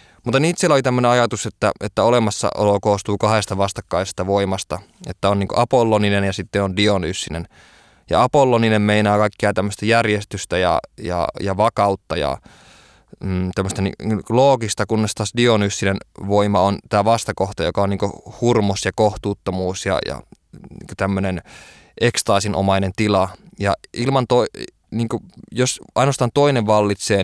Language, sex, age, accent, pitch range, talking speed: Finnish, male, 20-39, native, 95-115 Hz, 135 wpm